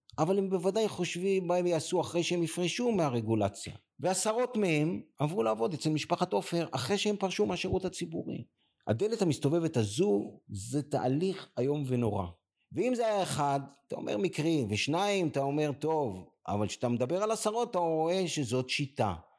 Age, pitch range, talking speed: 50-69, 115-175 Hz, 155 wpm